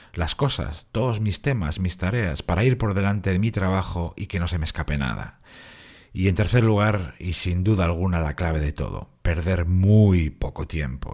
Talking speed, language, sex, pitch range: 200 wpm, Spanish, male, 85-105 Hz